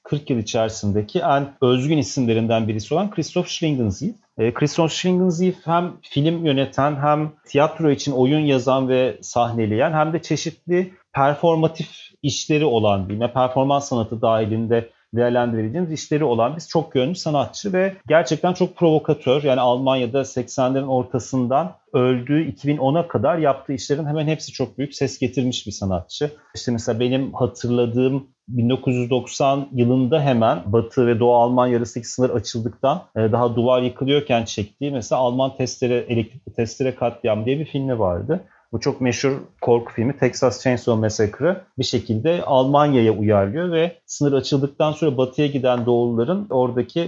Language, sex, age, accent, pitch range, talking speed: Turkish, male, 40-59, native, 120-150 Hz, 140 wpm